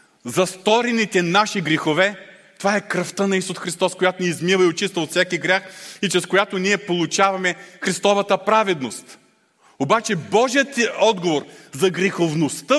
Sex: male